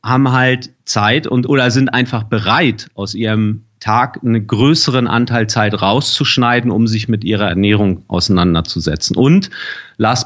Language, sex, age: German, male, 40-59